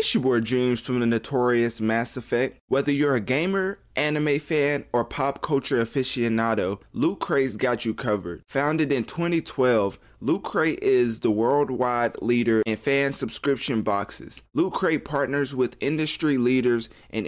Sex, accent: male, American